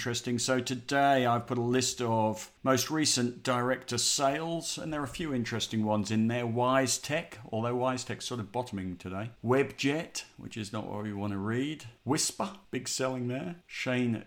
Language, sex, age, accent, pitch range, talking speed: English, male, 50-69, British, 100-125 Hz, 185 wpm